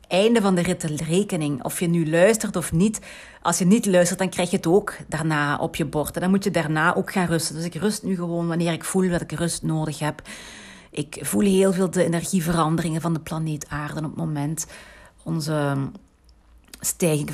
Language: Dutch